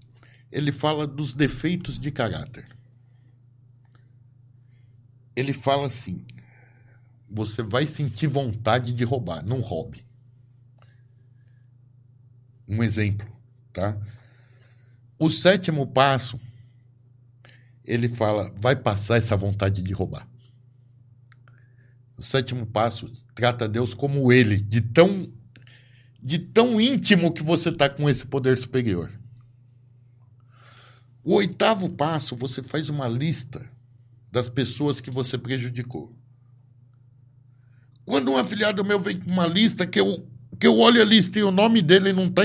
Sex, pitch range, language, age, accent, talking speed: male, 120-145 Hz, Portuguese, 60-79, Brazilian, 115 wpm